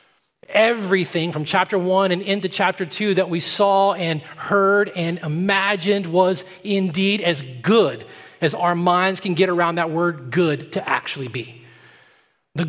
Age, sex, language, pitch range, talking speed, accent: 40-59, male, English, 155-205 Hz, 150 wpm, American